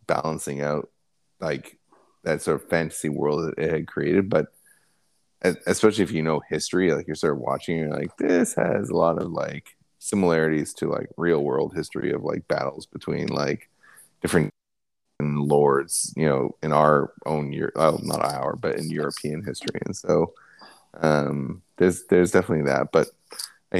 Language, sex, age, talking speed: English, male, 30-49, 175 wpm